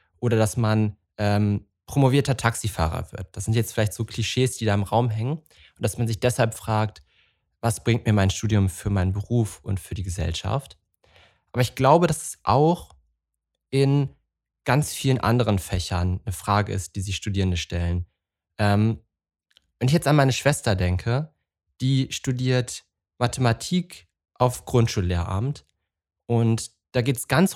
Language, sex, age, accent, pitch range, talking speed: German, male, 20-39, German, 100-130 Hz, 155 wpm